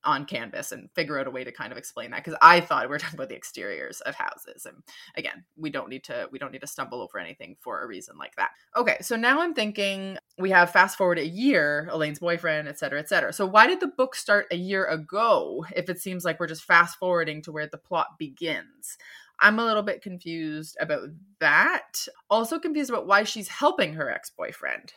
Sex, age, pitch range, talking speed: female, 20-39, 160-215 Hz, 220 wpm